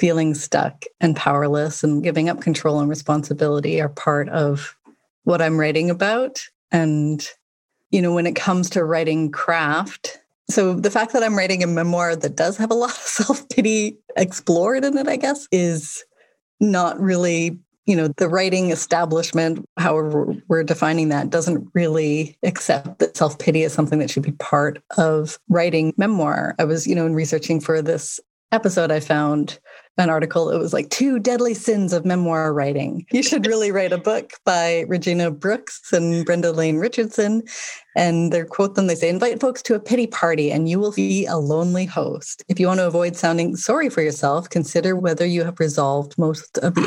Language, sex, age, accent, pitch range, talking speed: English, female, 30-49, American, 155-185 Hz, 185 wpm